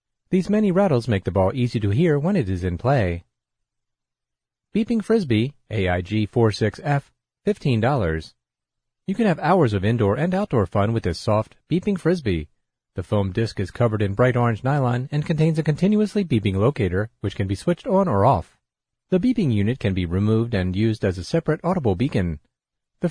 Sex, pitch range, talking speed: male, 100-160 Hz, 185 wpm